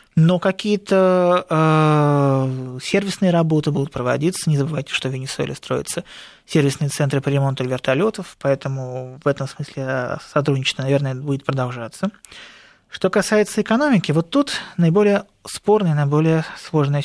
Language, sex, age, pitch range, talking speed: Russian, male, 20-39, 140-185 Hz, 125 wpm